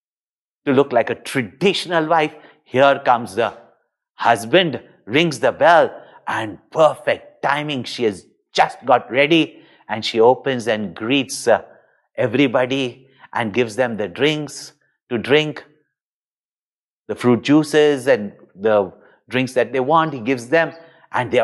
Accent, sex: Indian, male